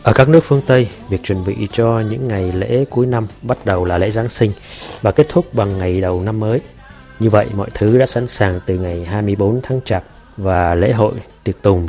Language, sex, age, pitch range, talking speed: Vietnamese, male, 20-39, 95-115 Hz, 225 wpm